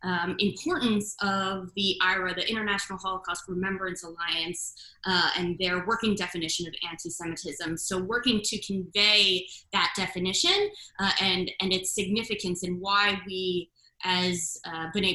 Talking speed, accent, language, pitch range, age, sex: 135 wpm, American, English, 180-215 Hz, 20-39, female